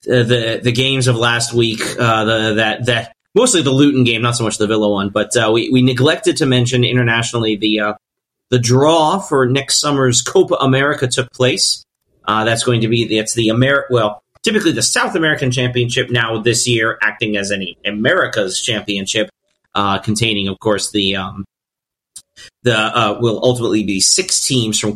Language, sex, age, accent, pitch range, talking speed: English, male, 30-49, American, 110-130 Hz, 180 wpm